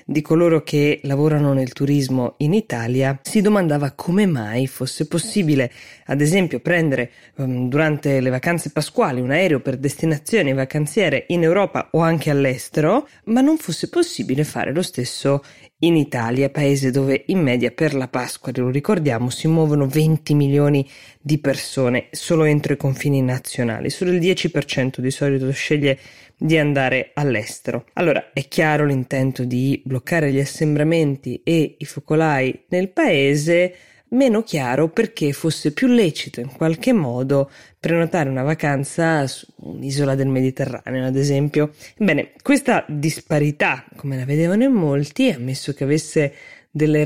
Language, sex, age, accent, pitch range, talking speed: Italian, female, 20-39, native, 135-165 Hz, 145 wpm